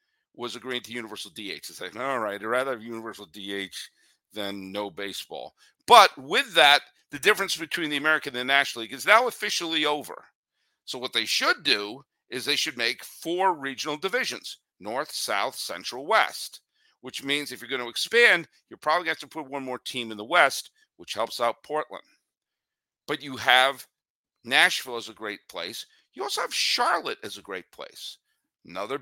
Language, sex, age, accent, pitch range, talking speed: English, male, 50-69, American, 120-180 Hz, 185 wpm